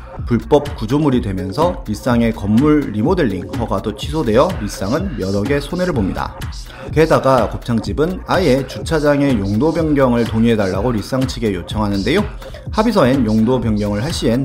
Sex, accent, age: male, native, 30-49